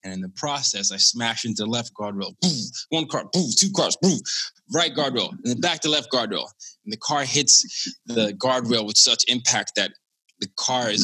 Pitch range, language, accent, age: 105-125 Hz, English, American, 20-39